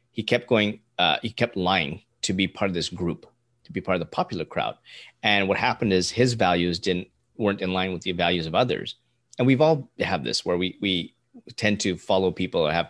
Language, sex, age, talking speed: English, male, 30-49, 230 wpm